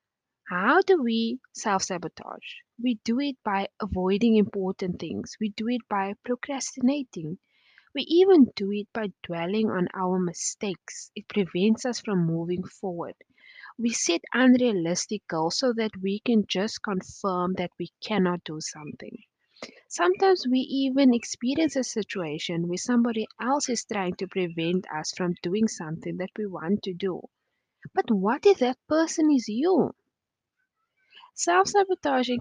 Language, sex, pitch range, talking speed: English, female, 185-255 Hz, 140 wpm